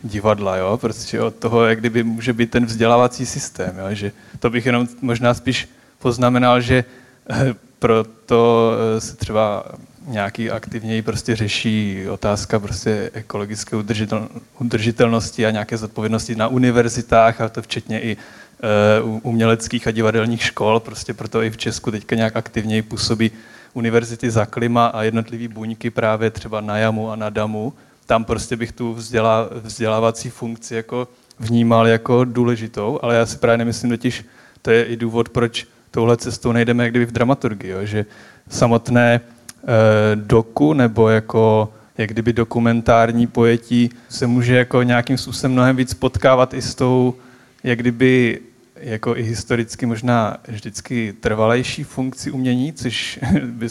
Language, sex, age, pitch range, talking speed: Slovak, male, 20-39, 110-120 Hz, 145 wpm